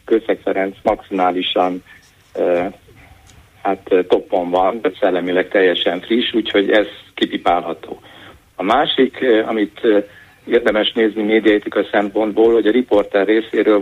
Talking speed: 100 wpm